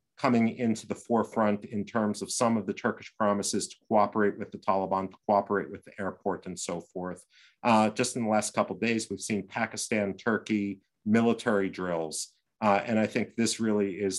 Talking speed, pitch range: 195 wpm, 95-115 Hz